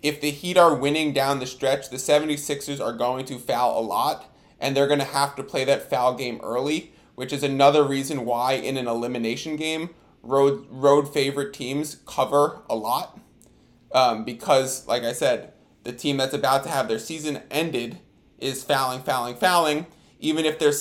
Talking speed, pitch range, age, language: 185 wpm, 130-150 Hz, 20-39, English